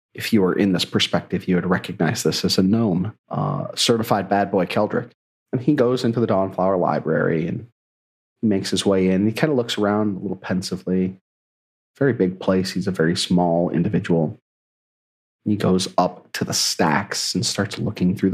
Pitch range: 70-100 Hz